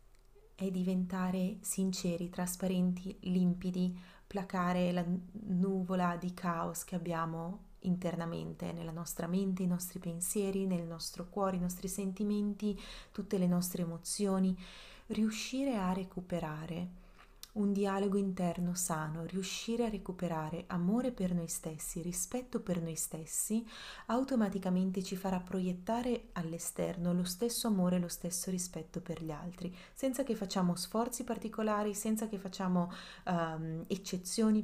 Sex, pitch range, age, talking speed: female, 170-200 Hz, 30-49, 120 wpm